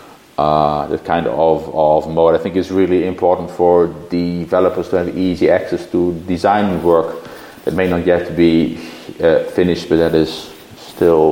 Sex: male